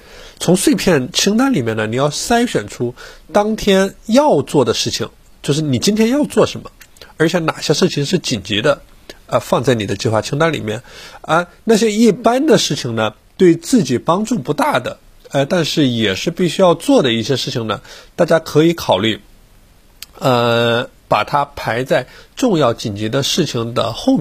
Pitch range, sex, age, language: 115-170 Hz, male, 50-69, Chinese